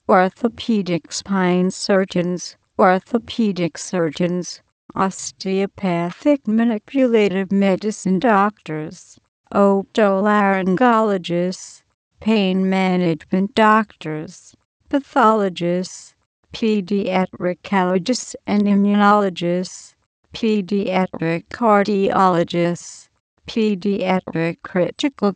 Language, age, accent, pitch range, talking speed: English, 60-79, American, 180-210 Hz, 50 wpm